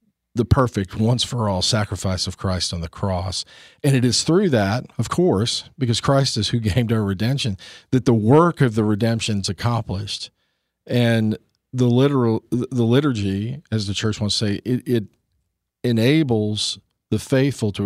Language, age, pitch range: English, 40-59, 105-130 Hz